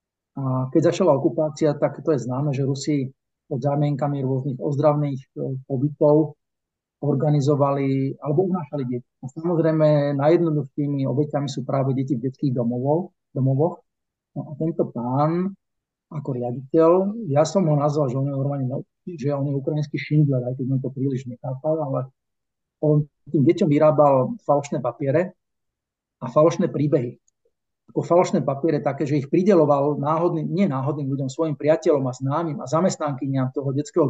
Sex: male